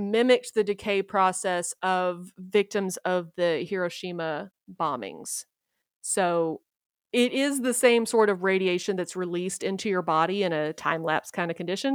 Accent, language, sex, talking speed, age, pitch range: American, English, female, 150 wpm, 30-49, 175-225 Hz